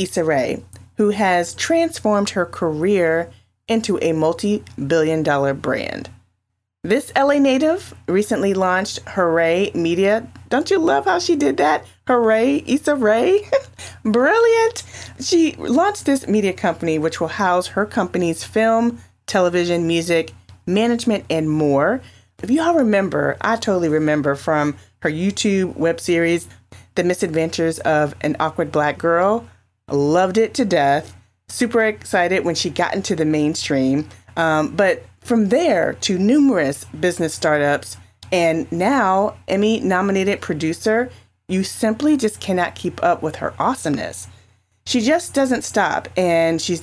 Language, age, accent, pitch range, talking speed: English, 30-49, American, 155-220 Hz, 135 wpm